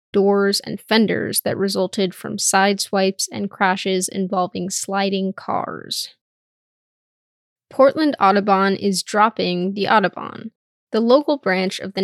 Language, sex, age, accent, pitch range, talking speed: English, female, 10-29, American, 185-220 Hz, 115 wpm